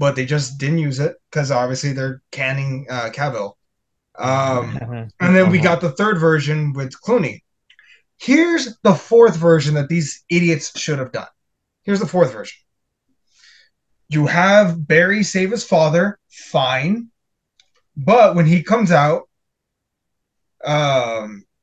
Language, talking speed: English, 135 wpm